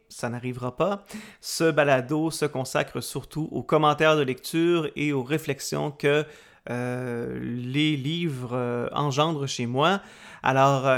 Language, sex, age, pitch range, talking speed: French, male, 30-49, 140-170 Hz, 125 wpm